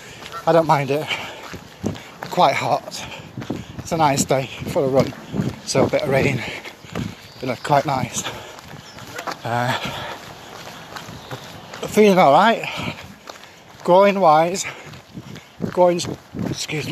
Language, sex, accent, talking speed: English, male, British, 105 wpm